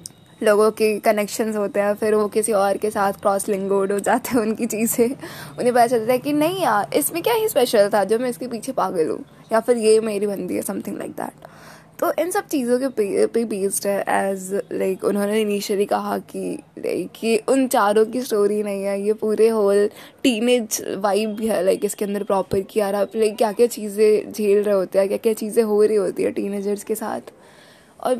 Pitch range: 205-240 Hz